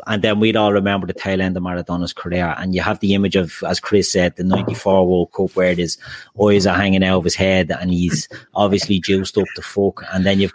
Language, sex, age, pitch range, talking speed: English, male, 30-49, 95-105 Hz, 250 wpm